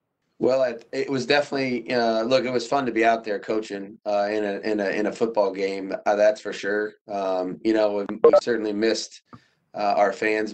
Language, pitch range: English, 105-115 Hz